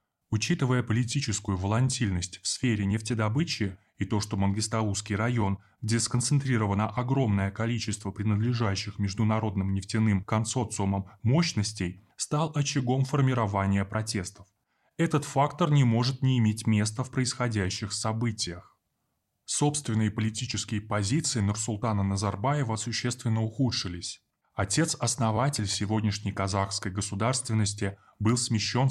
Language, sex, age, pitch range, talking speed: Russian, male, 20-39, 100-125 Hz, 100 wpm